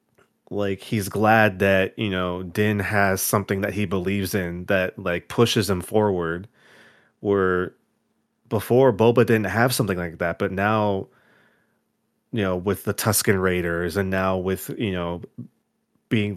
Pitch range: 95-120 Hz